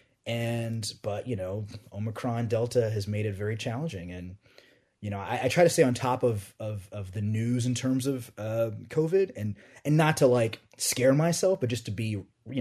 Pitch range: 105-130 Hz